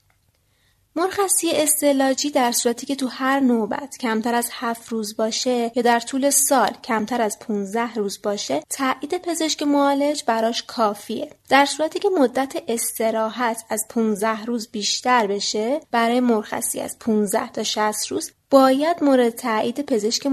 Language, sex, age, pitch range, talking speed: English, female, 30-49, 225-285 Hz, 140 wpm